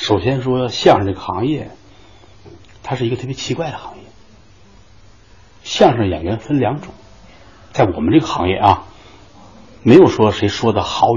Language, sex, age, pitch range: Chinese, male, 60-79, 100-145 Hz